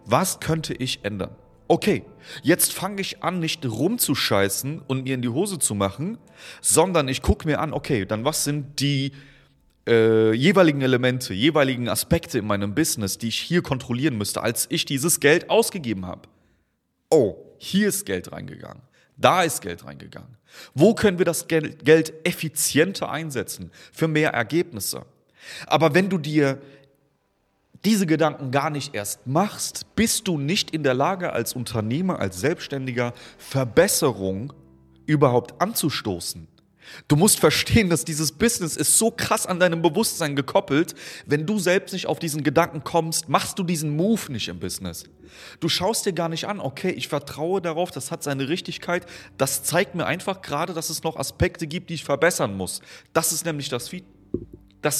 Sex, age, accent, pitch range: male, 30-49, German, 125-175 Hz